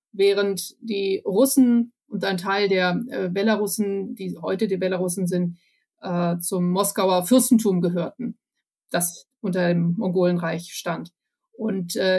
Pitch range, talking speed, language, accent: 200-260 Hz, 130 wpm, German, German